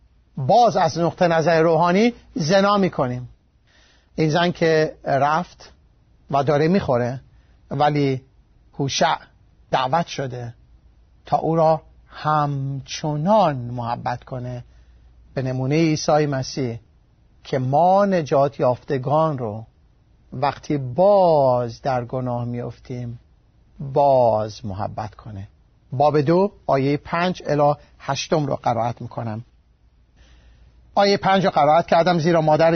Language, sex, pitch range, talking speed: Persian, male, 125-185 Hz, 105 wpm